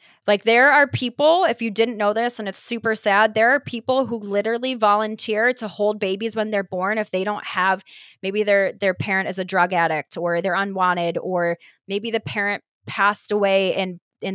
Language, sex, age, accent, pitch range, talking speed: English, female, 30-49, American, 195-240 Hz, 200 wpm